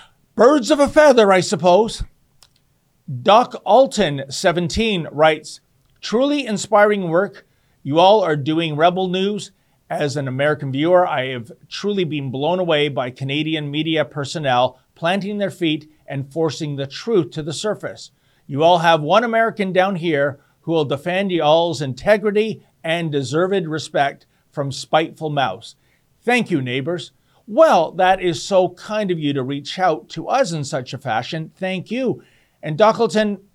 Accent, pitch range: American, 145-190 Hz